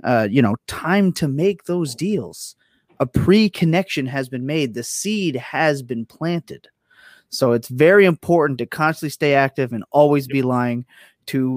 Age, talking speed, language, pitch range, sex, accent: 30-49, 160 wpm, English, 130-165 Hz, male, American